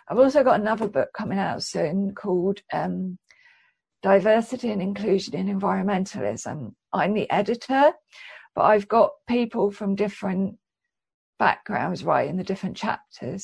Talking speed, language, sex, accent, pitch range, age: 130 wpm, English, female, British, 190-210 Hz, 50-69